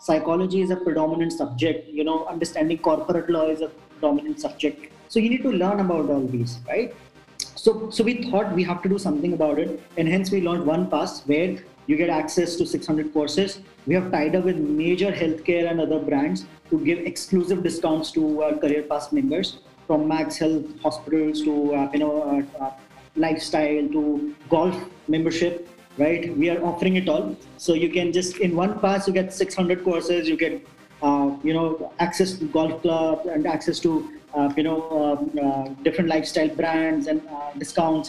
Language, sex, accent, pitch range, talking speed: English, male, Indian, 155-185 Hz, 190 wpm